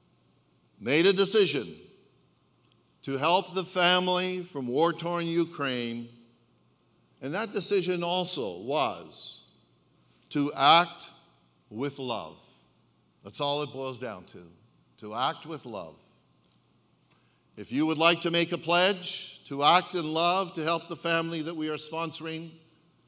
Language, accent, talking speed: English, American, 125 wpm